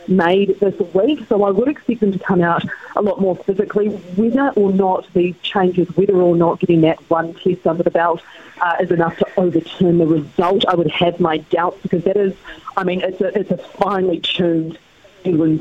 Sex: female